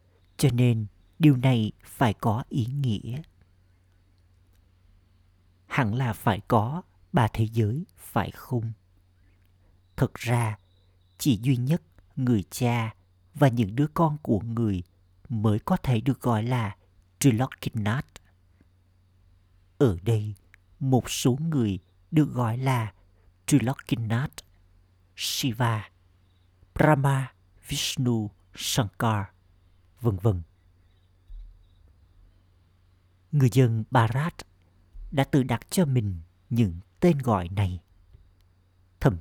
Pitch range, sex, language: 90-125 Hz, male, Vietnamese